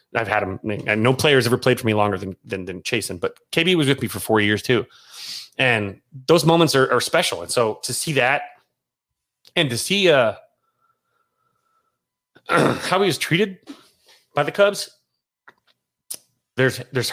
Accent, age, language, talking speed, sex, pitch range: American, 30-49, English, 170 wpm, male, 120-165 Hz